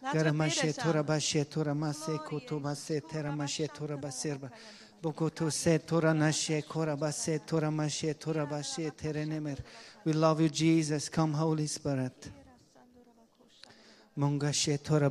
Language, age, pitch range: English, 40-59, 150-160 Hz